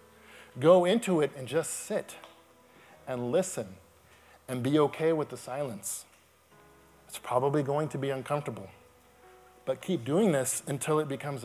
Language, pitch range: English, 125-165 Hz